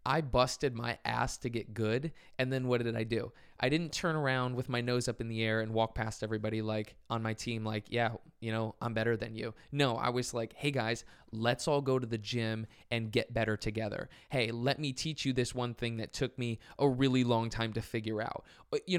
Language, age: English, 20-39